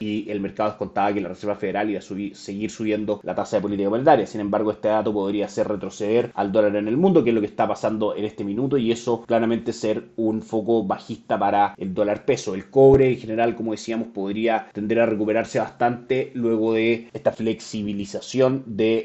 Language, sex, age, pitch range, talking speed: Spanish, male, 30-49, 105-125 Hz, 210 wpm